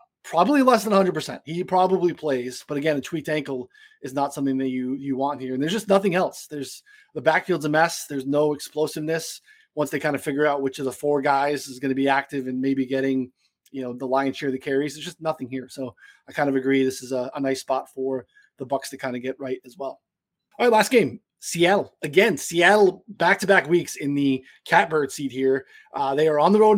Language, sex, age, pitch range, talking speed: English, male, 20-39, 135-180 Hz, 235 wpm